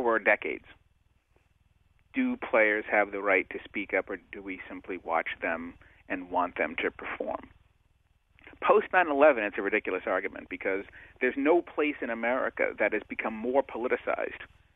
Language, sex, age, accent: English, male, 40-59, American